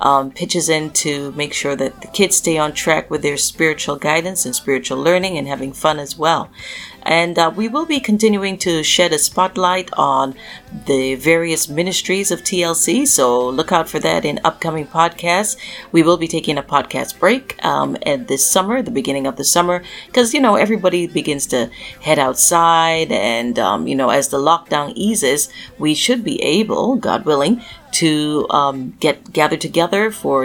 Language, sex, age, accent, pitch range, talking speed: English, female, 40-59, American, 150-200 Hz, 180 wpm